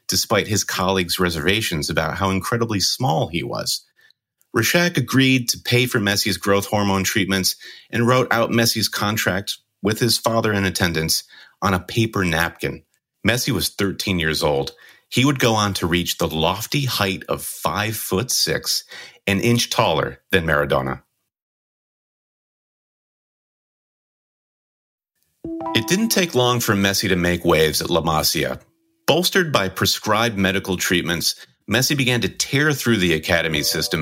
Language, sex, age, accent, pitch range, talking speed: English, male, 40-59, American, 90-115 Hz, 145 wpm